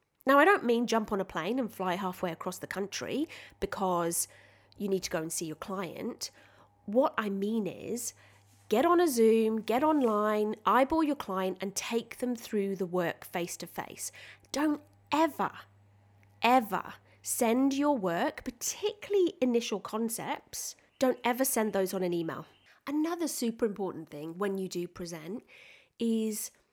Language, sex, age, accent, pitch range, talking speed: English, female, 30-49, British, 180-255 Hz, 155 wpm